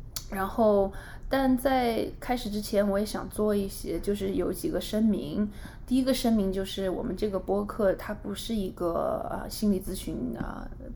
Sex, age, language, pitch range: female, 20-39, Chinese, 180-215 Hz